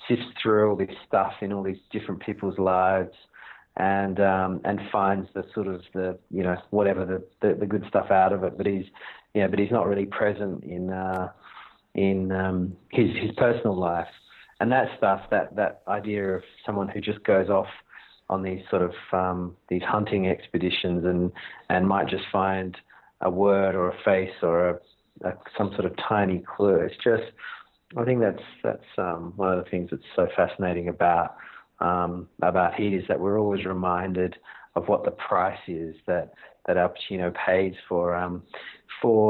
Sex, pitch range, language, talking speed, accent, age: male, 90-100 Hz, English, 185 wpm, Australian, 40-59